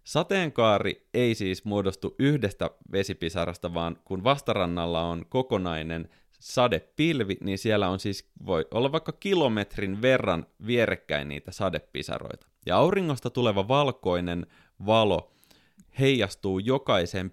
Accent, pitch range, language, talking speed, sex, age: native, 90-125 Hz, Finnish, 100 wpm, male, 30-49